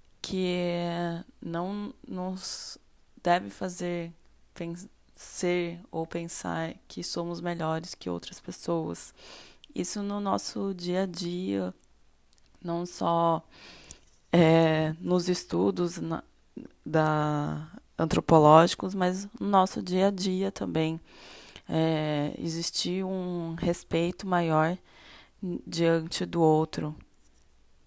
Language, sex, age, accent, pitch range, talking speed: Portuguese, female, 20-39, Brazilian, 155-185 Hz, 75 wpm